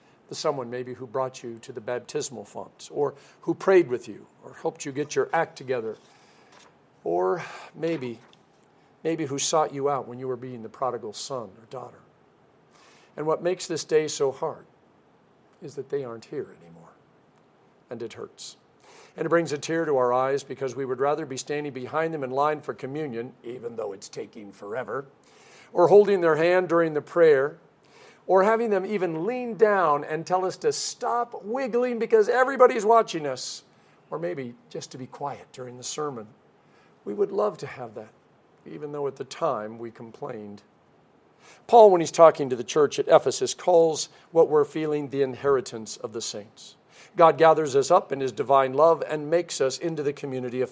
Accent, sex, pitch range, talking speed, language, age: American, male, 135-205 Hz, 185 wpm, English, 50-69